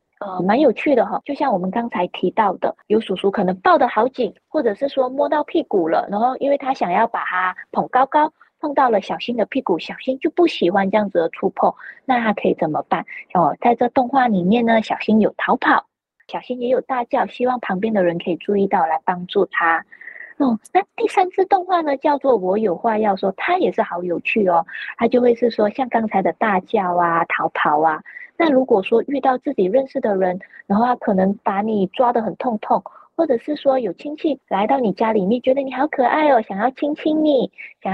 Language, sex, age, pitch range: Chinese, female, 20-39, 200-275 Hz